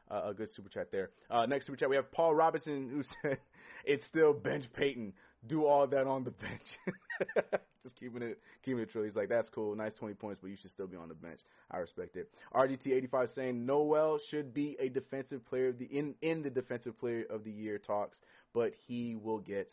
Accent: American